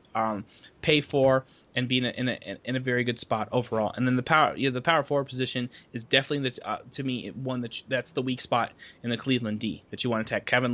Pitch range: 115-130 Hz